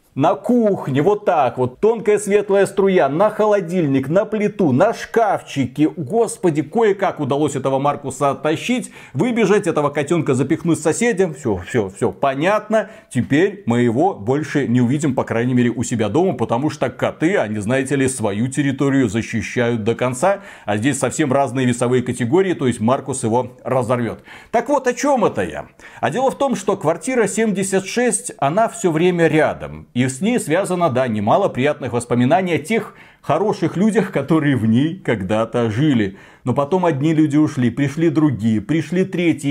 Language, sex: Russian, male